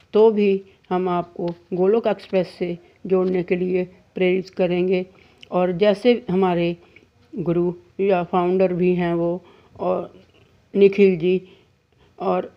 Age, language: 50-69, Hindi